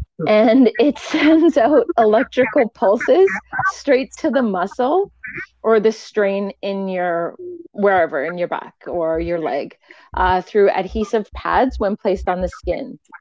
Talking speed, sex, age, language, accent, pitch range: 140 wpm, female, 30-49, English, American, 180-250 Hz